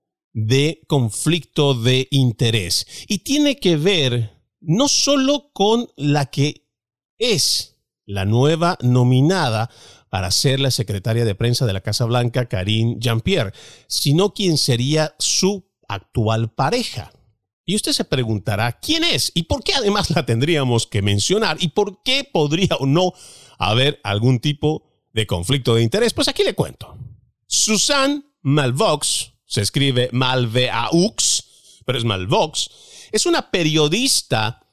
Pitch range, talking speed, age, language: 115-185 Hz, 135 wpm, 50-69, Spanish